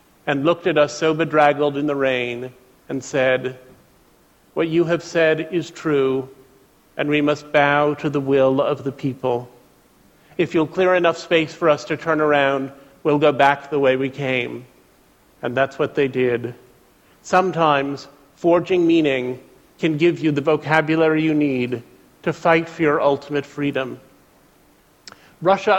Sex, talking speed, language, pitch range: male, 155 wpm, English, 140-165 Hz